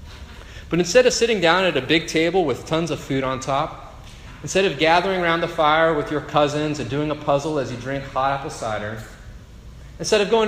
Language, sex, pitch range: English, male, 105-150 Hz